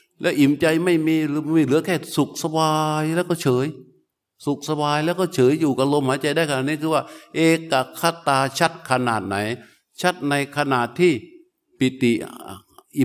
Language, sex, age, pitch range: Thai, male, 60-79, 115-160 Hz